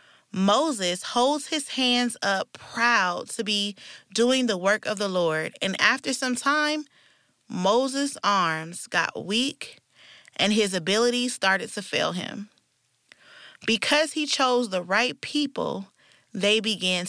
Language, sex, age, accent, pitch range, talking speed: English, female, 20-39, American, 185-240 Hz, 130 wpm